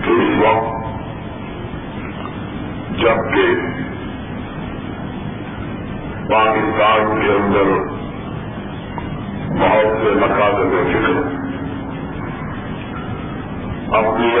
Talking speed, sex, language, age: 45 wpm, female, Urdu, 50-69